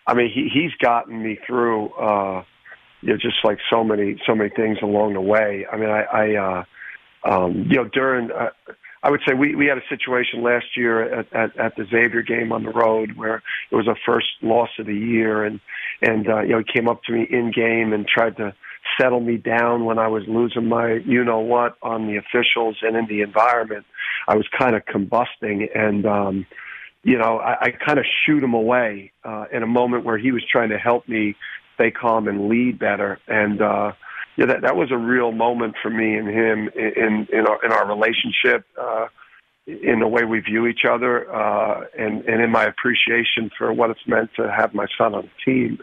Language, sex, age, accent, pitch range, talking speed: English, male, 50-69, American, 105-120 Hz, 215 wpm